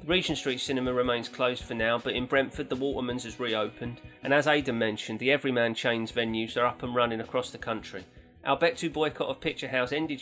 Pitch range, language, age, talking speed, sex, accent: 120-140 Hz, English, 30-49, 210 wpm, male, British